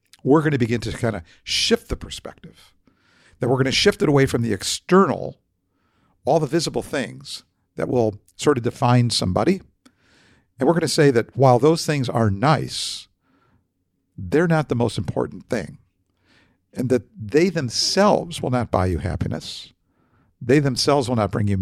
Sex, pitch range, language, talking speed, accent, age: male, 100-135 Hz, English, 170 wpm, American, 50-69